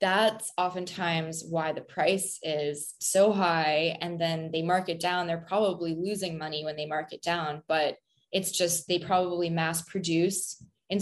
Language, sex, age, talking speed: English, female, 20-39, 170 wpm